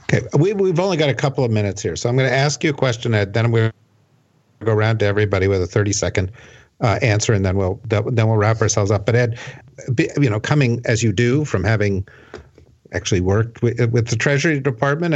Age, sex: 50-69, male